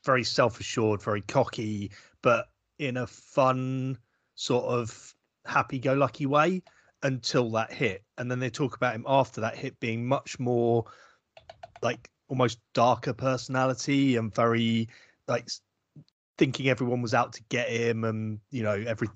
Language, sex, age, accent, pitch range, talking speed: English, male, 30-49, British, 110-135 Hz, 140 wpm